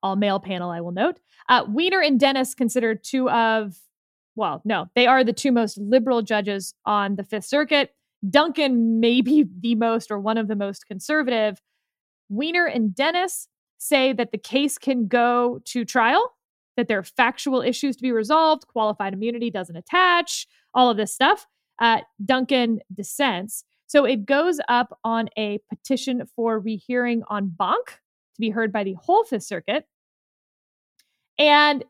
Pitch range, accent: 215-285 Hz, American